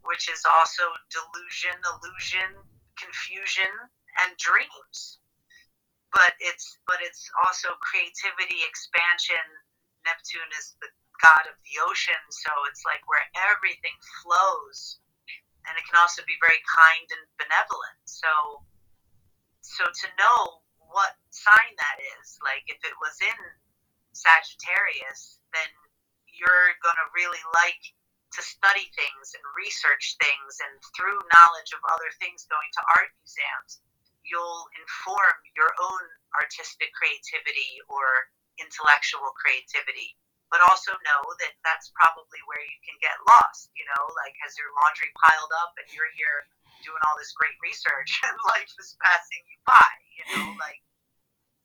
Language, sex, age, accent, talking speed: English, female, 40-59, American, 135 wpm